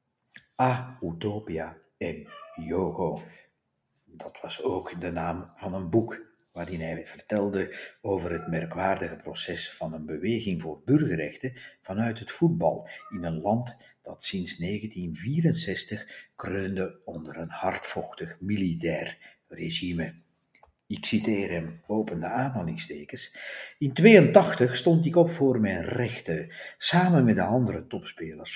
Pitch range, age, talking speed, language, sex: 90-130 Hz, 50-69, 120 wpm, Dutch, male